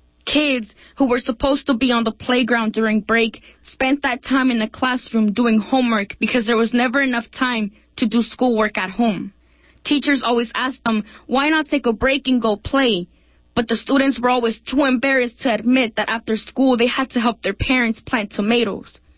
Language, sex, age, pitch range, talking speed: English, female, 20-39, 220-265 Hz, 195 wpm